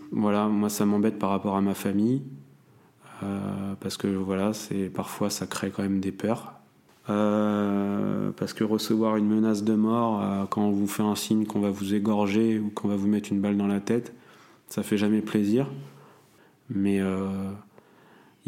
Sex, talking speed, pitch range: male, 180 wpm, 95-105 Hz